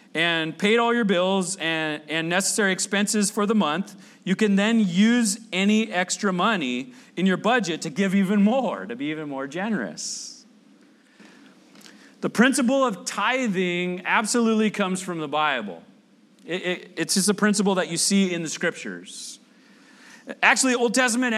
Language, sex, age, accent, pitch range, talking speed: English, male, 40-59, American, 185-240 Hz, 150 wpm